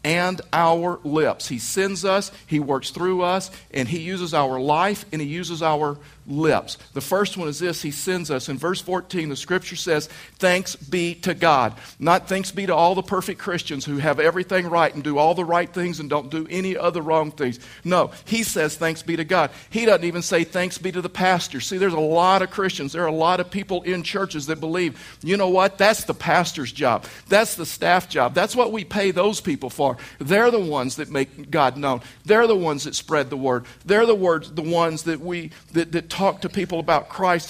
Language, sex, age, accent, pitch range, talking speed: English, male, 50-69, American, 155-190 Hz, 225 wpm